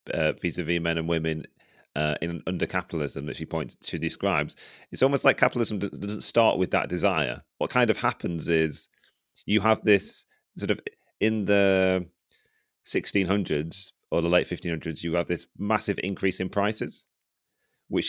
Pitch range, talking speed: 80-90 Hz, 155 wpm